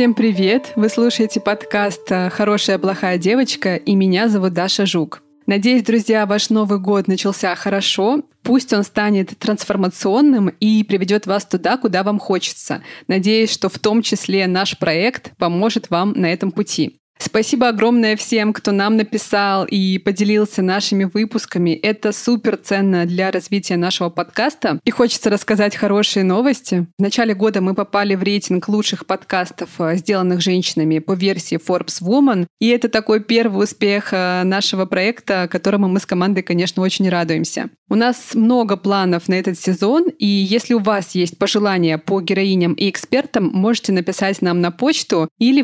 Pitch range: 185-220 Hz